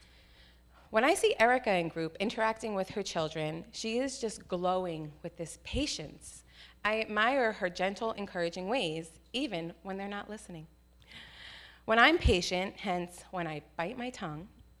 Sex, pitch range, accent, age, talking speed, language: female, 165-210 Hz, American, 30-49, 150 wpm, English